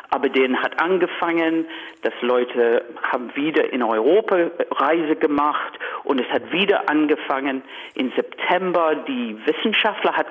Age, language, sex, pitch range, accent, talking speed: 50-69, German, male, 150-230 Hz, German, 130 wpm